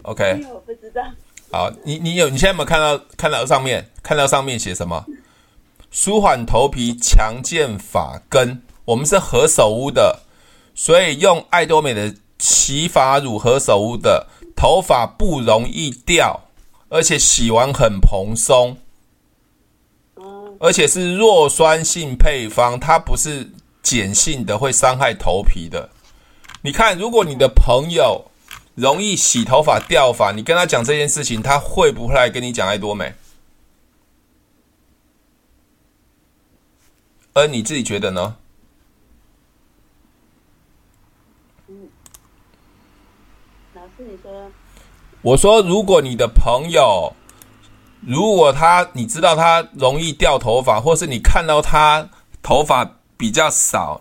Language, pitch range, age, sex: Chinese, 115-180 Hz, 20-39, male